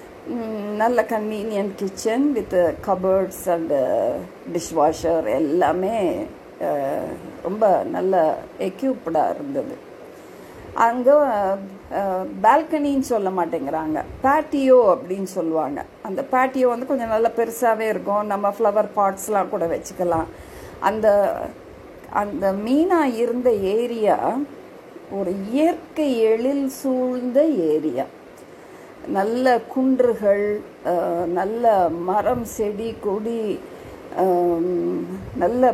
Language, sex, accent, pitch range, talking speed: Tamil, female, native, 190-265 Hz, 80 wpm